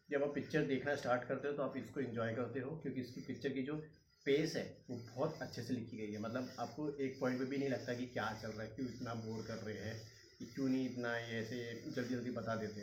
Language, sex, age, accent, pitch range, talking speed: Hindi, male, 30-49, native, 115-135 Hz, 260 wpm